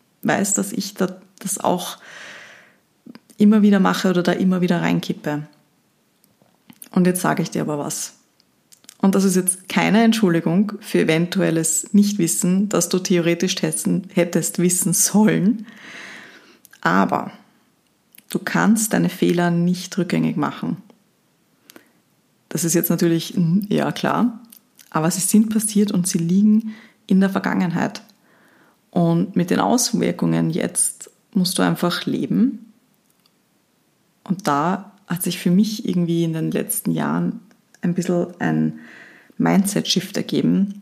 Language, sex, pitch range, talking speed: German, female, 170-210 Hz, 125 wpm